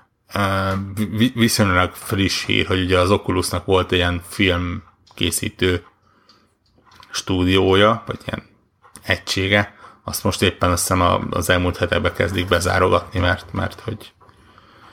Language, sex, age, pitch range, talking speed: Hungarian, male, 30-49, 90-105 Hz, 115 wpm